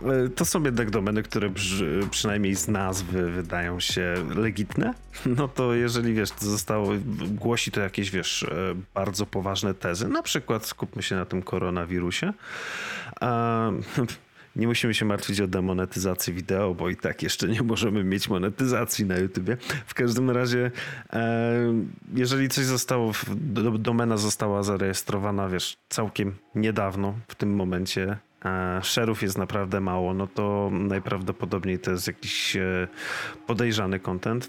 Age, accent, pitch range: 30-49, native, 95-115 Hz